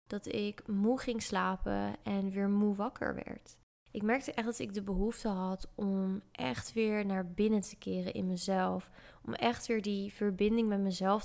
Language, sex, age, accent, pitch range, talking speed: Dutch, female, 20-39, Dutch, 195-230 Hz, 180 wpm